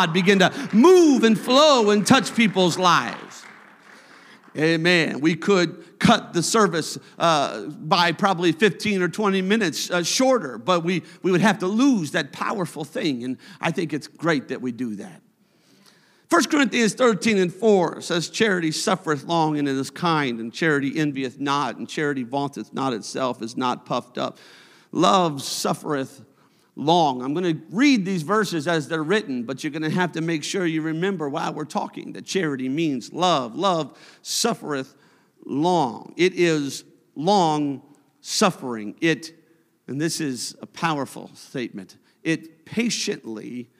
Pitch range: 150-210 Hz